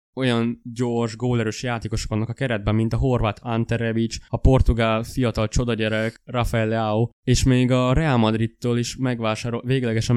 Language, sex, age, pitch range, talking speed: Hungarian, male, 20-39, 110-125 Hz, 155 wpm